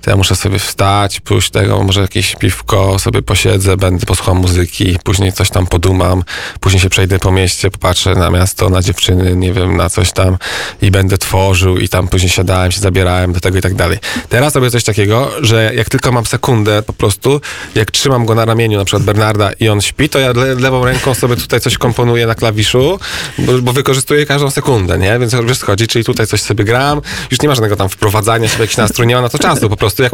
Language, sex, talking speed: Polish, male, 220 wpm